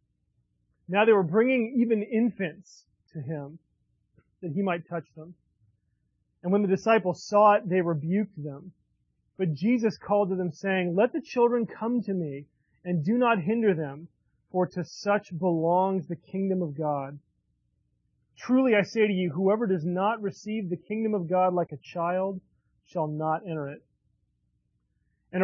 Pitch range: 170-205 Hz